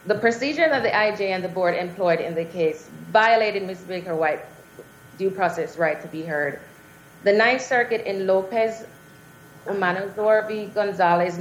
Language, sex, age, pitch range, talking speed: English, female, 30-49, 165-195 Hz, 145 wpm